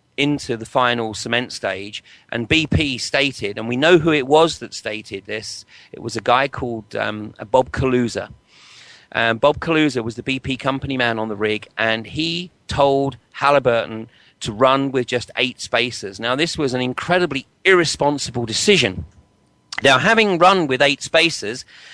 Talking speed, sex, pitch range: 160 wpm, male, 115-160 Hz